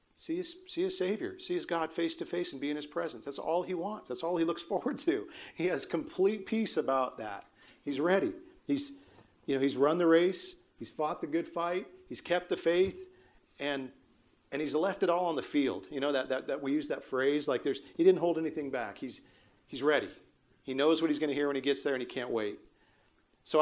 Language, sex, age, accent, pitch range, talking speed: English, male, 40-59, American, 125-175 Hz, 240 wpm